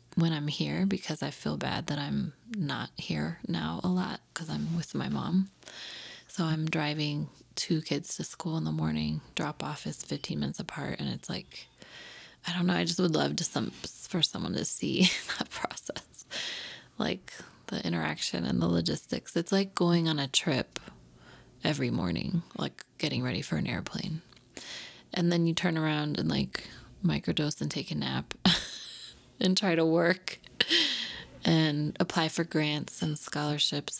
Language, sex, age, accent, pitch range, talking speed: English, female, 20-39, American, 150-180 Hz, 165 wpm